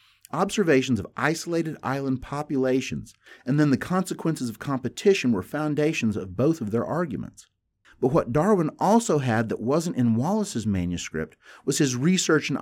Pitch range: 100-150 Hz